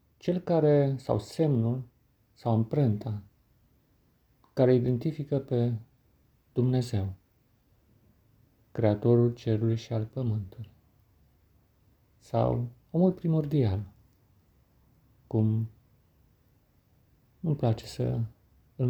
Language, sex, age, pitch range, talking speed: Romanian, male, 50-69, 110-130 Hz, 75 wpm